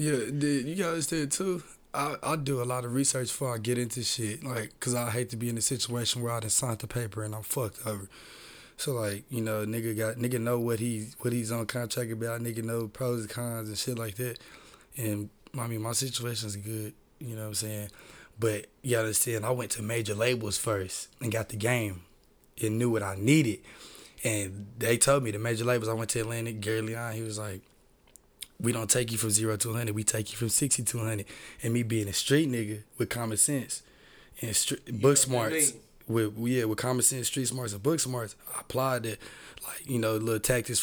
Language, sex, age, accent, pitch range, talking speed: English, male, 20-39, American, 110-125 Hz, 220 wpm